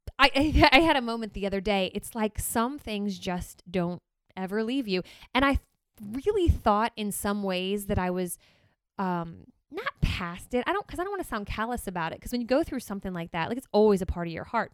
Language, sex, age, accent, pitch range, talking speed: English, female, 20-39, American, 185-235 Hz, 235 wpm